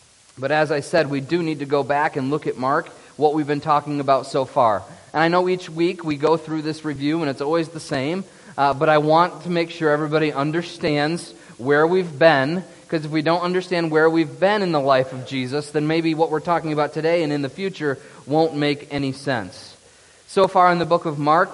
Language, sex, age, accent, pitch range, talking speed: English, male, 30-49, American, 150-180 Hz, 230 wpm